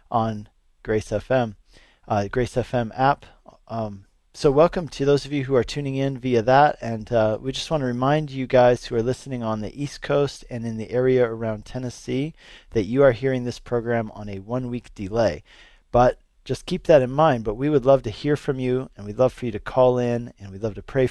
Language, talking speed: English, 225 wpm